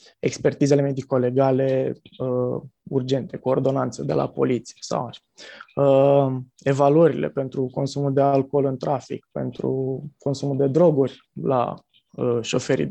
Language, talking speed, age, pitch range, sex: Romanian, 110 wpm, 20-39, 135-155 Hz, male